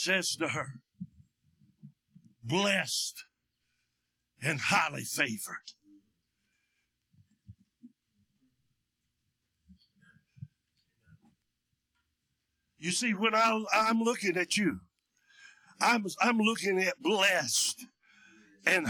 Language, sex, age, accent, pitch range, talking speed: English, male, 60-79, American, 180-235 Hz, 65 wpm